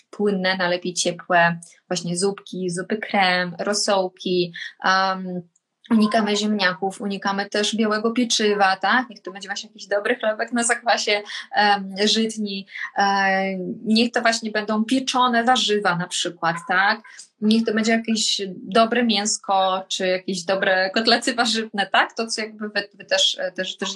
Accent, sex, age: native, female, 20-39